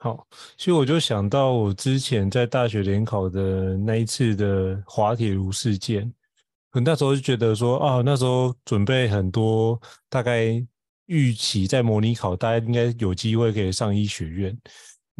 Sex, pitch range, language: male, 105-130 Hz, Chinese